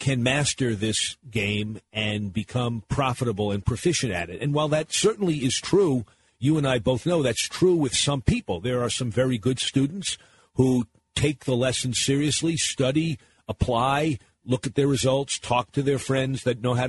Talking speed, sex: 180 wpm, male